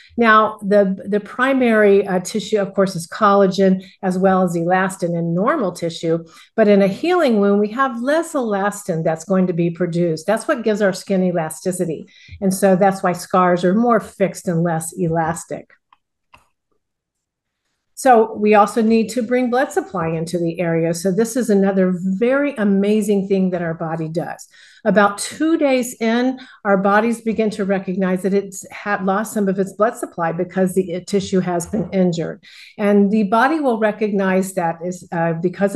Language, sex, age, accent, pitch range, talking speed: English, female, 50-69, American, 185-220 Hz, 175 wpm